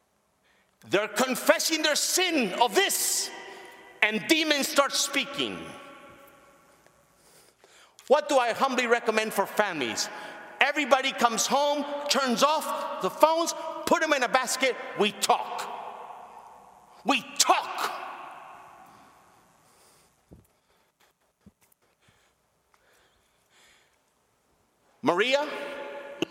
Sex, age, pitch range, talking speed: male, 50-69, 200-290 Hz, 80 wpm